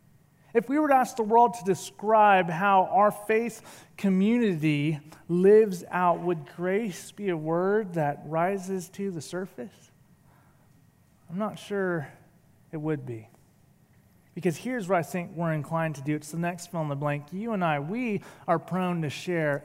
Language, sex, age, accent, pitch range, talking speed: English, male, 30-49, American, 155-215 Hz, 170 wpm